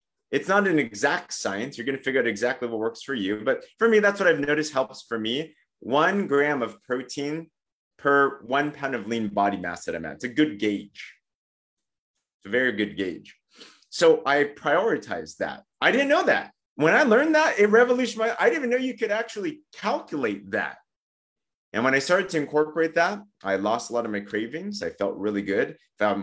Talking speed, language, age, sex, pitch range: 205 wpm, English, 30-49, male, 105-150 Hz